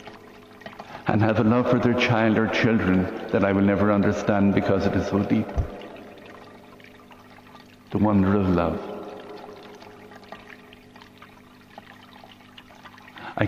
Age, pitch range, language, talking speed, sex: 60-79, 95-110 Hz, English, 105 wpm, male